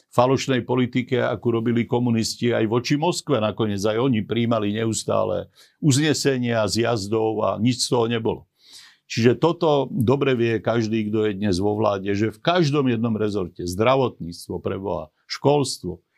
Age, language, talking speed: 50-69, Slovak, 140 wpm